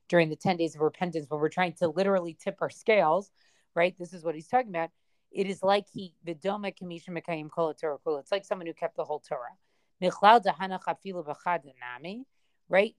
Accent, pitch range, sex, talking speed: American, 165-200 Hz, female, 155 wpm